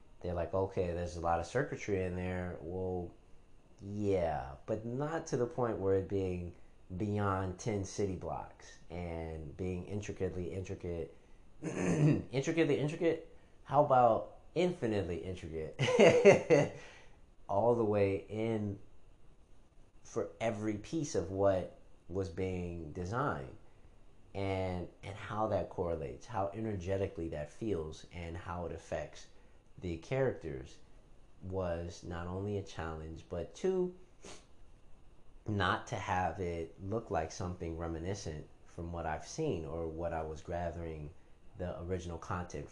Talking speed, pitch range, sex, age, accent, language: 125 wpm, 85-100 Hz, male, 30-49, American, English